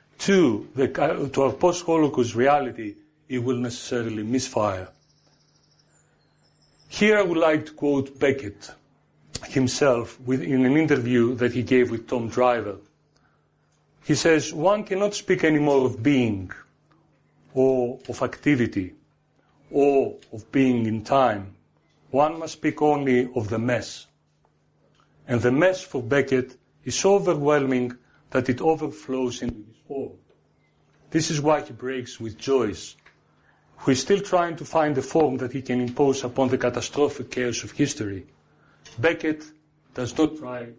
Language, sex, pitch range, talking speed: English, male, 120-150 Hz, 135 wpm